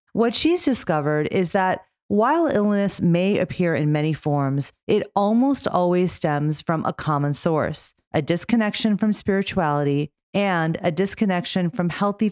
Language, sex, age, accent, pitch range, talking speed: English, female, 40-59, American, 150-200 Hz, 140 wpm